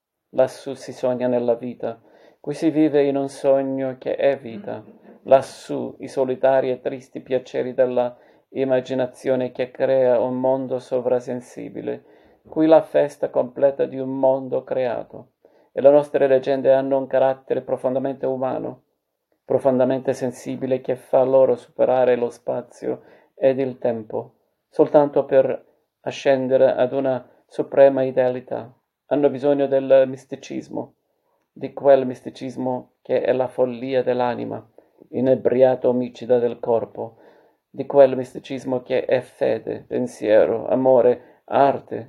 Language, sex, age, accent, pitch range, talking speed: Italian, male, 40-59, native, 125-135 Hz, 125 wpm